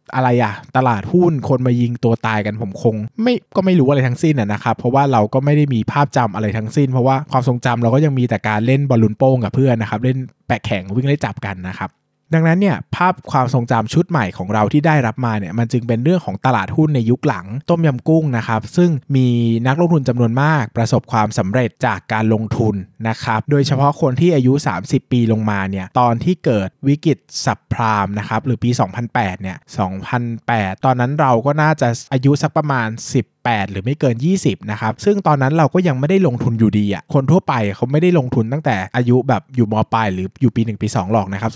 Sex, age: male, 20-39